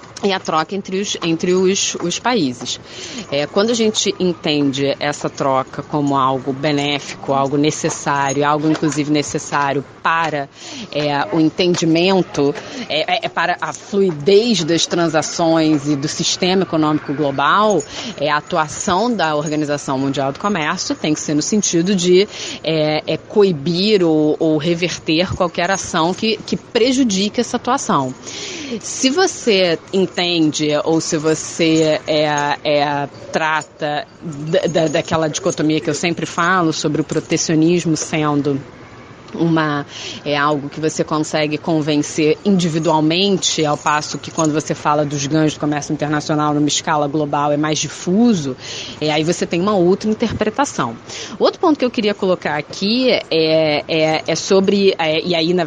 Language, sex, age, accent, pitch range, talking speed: Portuguese, female, 30-49, Brazilian, 150-180 Hz, 130 wpm